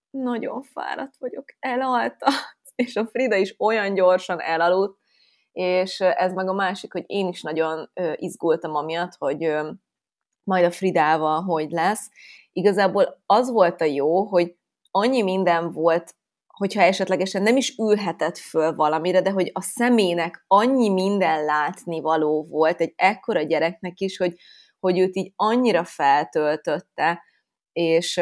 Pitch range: 160-190 Hz